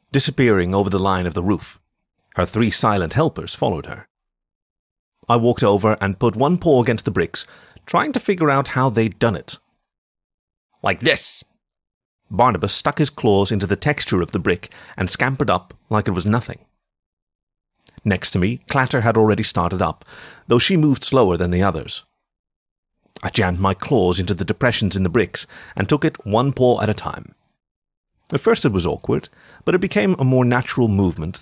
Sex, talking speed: male, 180 wpm